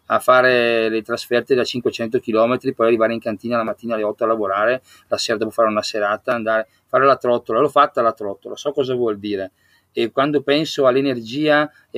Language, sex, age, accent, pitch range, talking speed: Italian, male, 30-49, native, 115-140 Hz, 205 wpm